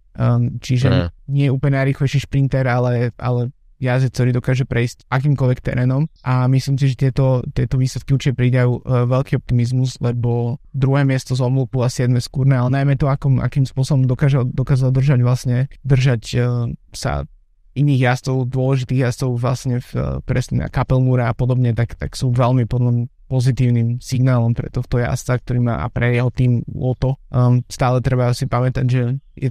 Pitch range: 120-130 Hz